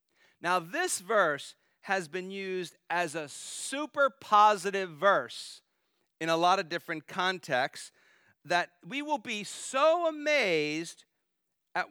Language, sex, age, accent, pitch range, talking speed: English, male, 50-69, American, 145-200 Hz, 120 wpm